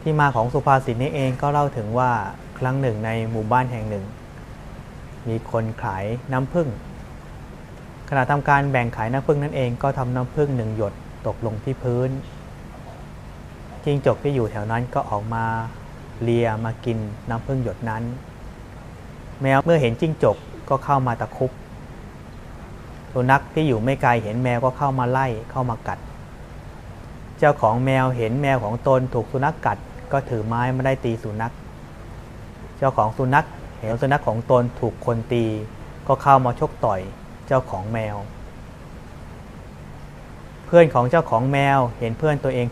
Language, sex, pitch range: Thai, male, 115-135 Hz